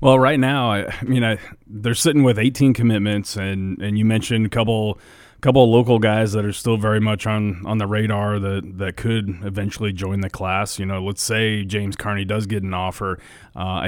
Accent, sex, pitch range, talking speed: American, male, 100-115 Hz, 205 wpm